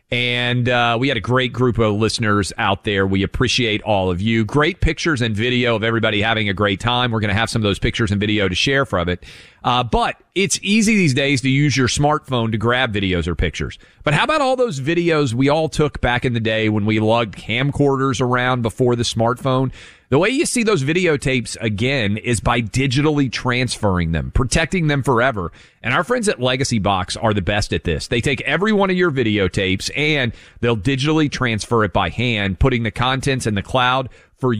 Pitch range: 105-145 Hz